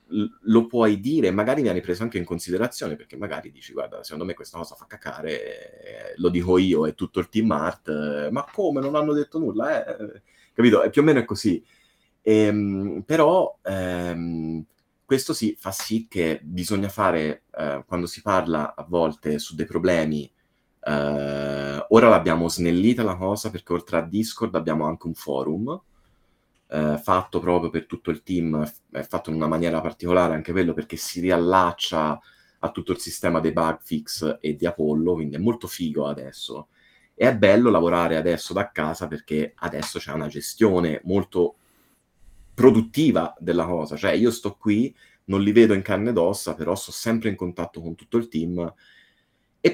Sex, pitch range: male, 80-100 Hz